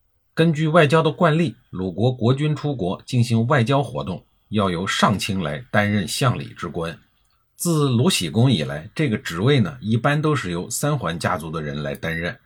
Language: Chinese